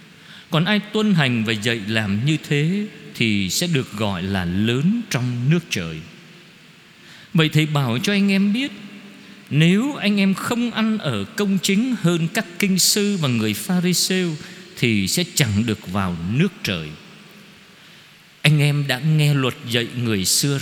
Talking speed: 160 wpm